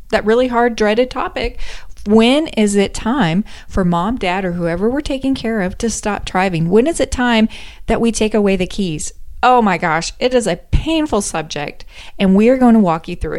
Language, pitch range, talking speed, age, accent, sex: English, 175-230 Hz, 205 wpm, 30-49, American, female